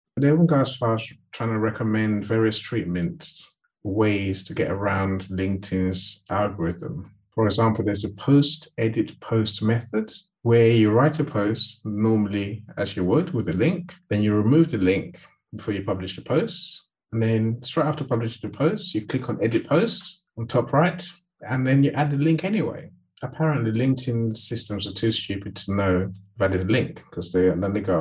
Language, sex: English, male